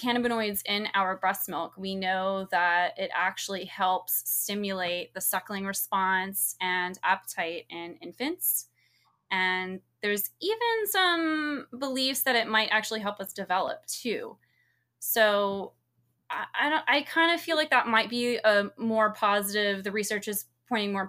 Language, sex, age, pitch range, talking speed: English, female, 20-39, 185-230 Hz, 140 wpm